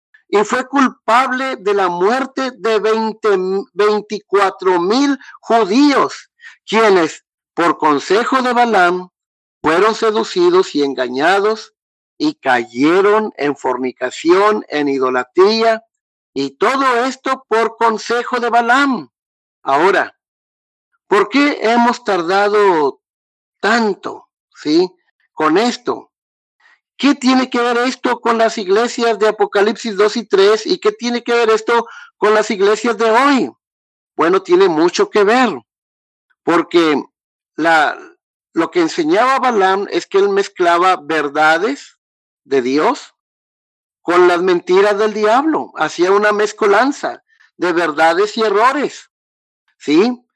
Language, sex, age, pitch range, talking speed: Spanish, male, 50-69, 195-280 Hz, 115 wpm